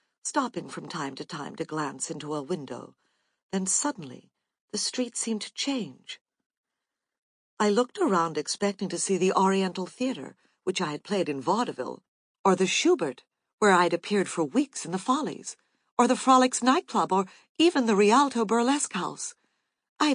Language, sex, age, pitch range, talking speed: English, female, 60-79, 170-225 Hz, 165 wpm